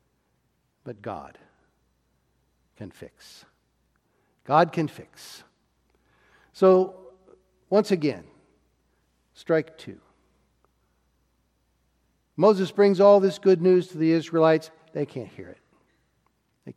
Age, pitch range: 60-79, 135-190 Hz